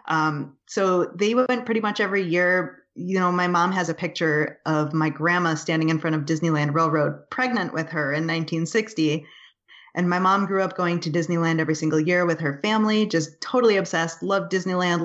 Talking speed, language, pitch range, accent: 190 wpm, English, 160-195 Hz, American